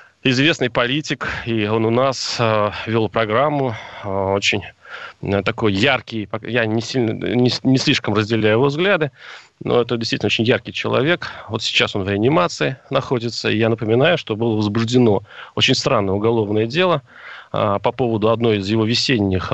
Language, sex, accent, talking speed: Russian, male, native, 160 wpm